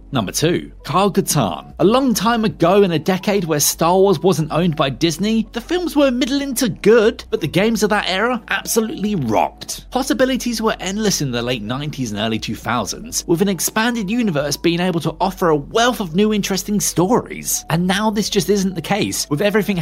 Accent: British